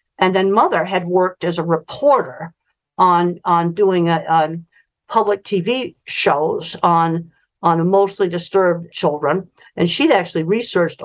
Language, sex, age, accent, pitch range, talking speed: English, female, 50-69, American, 170-215 Hz, 135 wpm